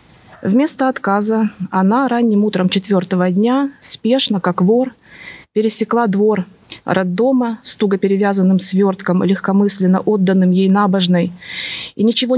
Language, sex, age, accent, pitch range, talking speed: Russian, female, 30-49, native, 185-245 Hz, 110 wpm